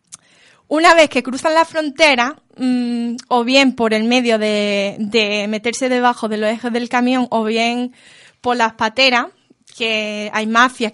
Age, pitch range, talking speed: 20-39, 225-265 Hz, 160 wpm